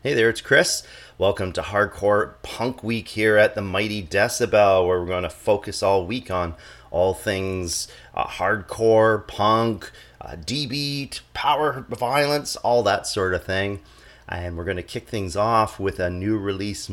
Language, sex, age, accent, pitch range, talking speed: English, male, 30-49, American, 95-115 Hz, 165 wpm